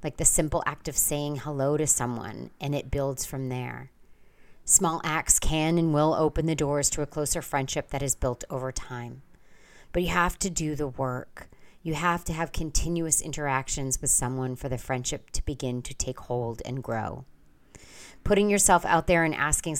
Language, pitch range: English, 130-155 Hz